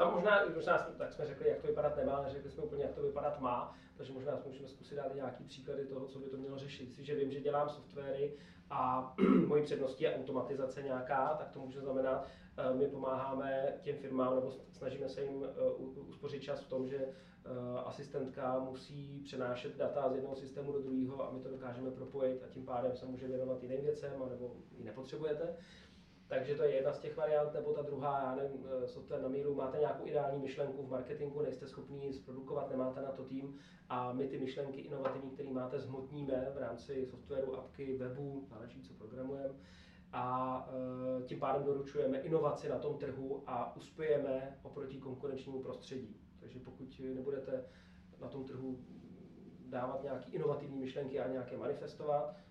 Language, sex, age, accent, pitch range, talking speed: Czech, male, 20-39, native, 130-140 Hz, 180 wpm